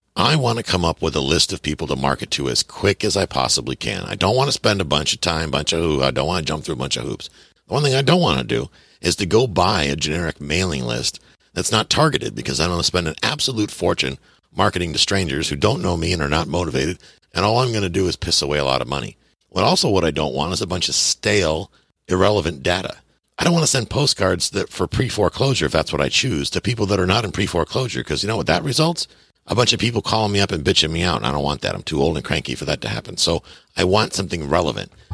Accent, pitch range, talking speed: American, 70-100 Hz, 280 wpm